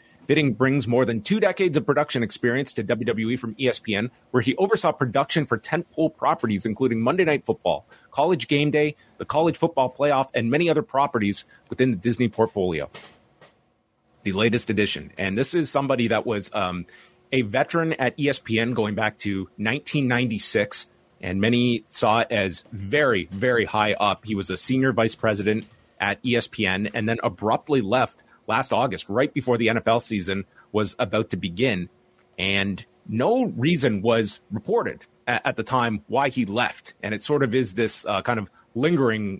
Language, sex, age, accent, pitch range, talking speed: English, male, 30-49, American, 110-135 Hz, 170 wpm